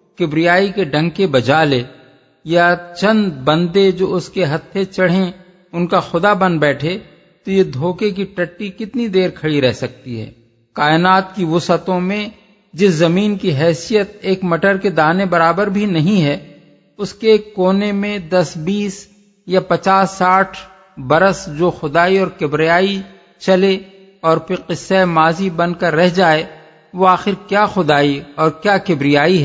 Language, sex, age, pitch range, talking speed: English, male, 50-69, 160-195 Hz, 145 wpm